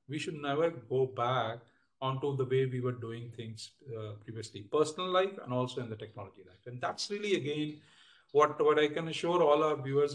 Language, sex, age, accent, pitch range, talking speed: English, male, 40-59, Indian, 120-140 Hz, 200 wpm